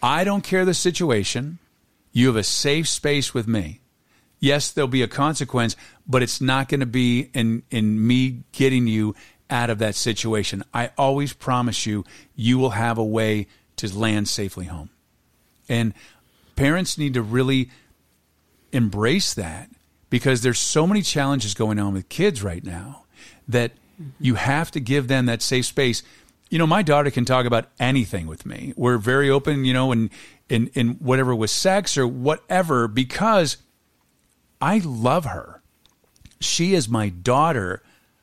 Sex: male